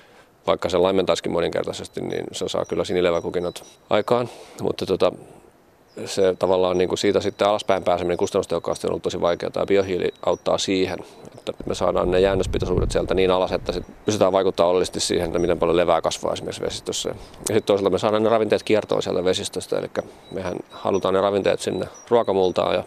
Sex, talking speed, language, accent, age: male, 175 wpm, Finnish, native, 30-49